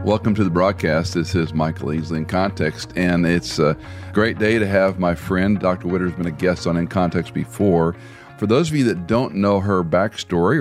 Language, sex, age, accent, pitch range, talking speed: English, male, 50-69, American, 85-105 Hz, 215 wpm